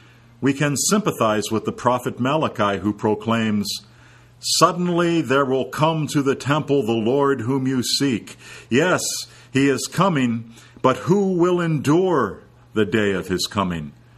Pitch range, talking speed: 105-125 Hz, 145 wpm